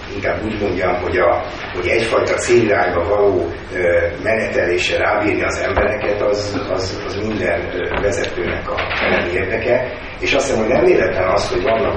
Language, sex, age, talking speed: Hungarian, male, 30-49, 155 wpm